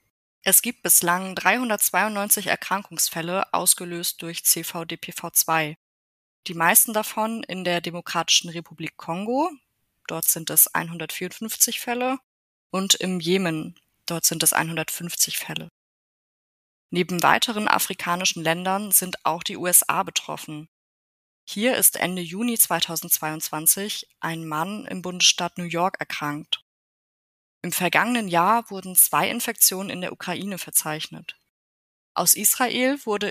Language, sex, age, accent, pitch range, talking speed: German, female, 20-39, German, 165-205 Hz, 115 wpm